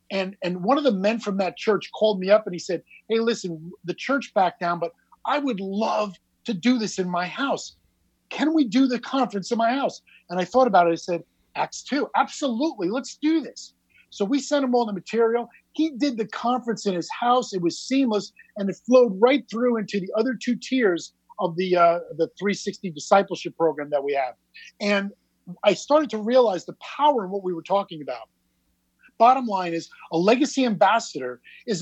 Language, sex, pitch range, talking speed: English, male, 190-250 Hz, 205 wpm